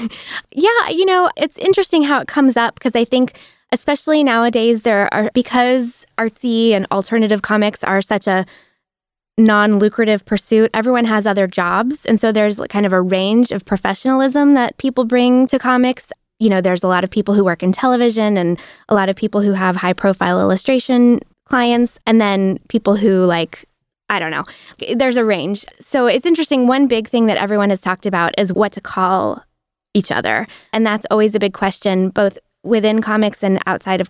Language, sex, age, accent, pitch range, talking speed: English, female, 20-39, American, 195-245 Hz, 190 wpm